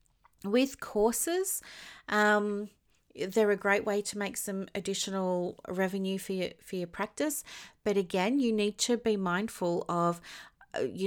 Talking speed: 140 wpm